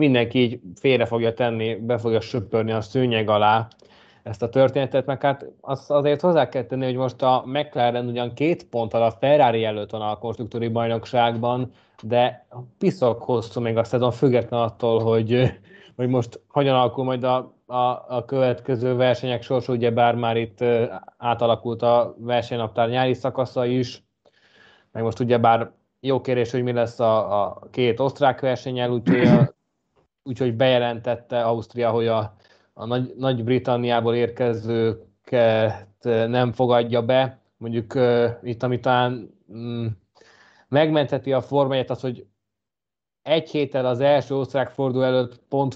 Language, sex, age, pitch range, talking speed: Hungarian, male, 20-39, 115-130 Hz, 140 wpm